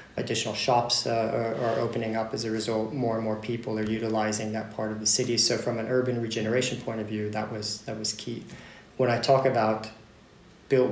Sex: male